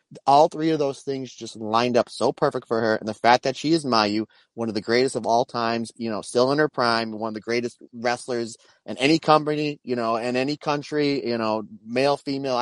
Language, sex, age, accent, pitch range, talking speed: English, male, 30-49, American, 115-150 Hz, 235 wpm